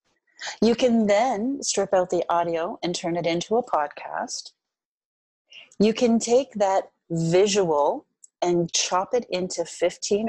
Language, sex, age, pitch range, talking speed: English, female, 30-49, 170-240 Hz, 135 wpm